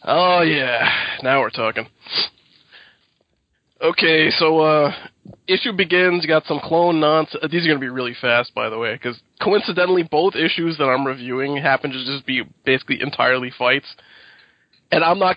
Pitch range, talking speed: 125-170 Hz, 165 wpm